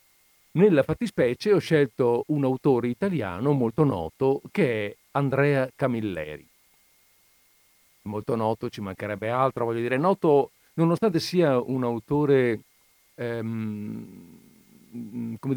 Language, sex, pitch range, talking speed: Italian, male, 110-145 Hz, 105 wpm